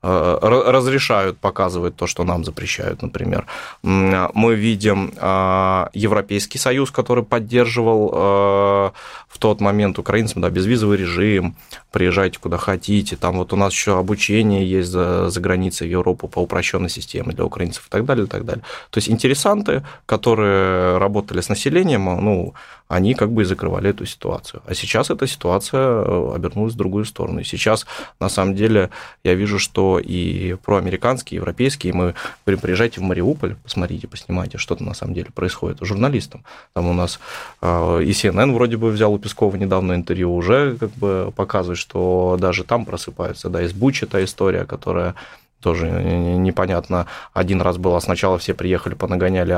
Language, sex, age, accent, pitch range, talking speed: Russian, male, 20-39, native, 90-110 Hz, 155 wpm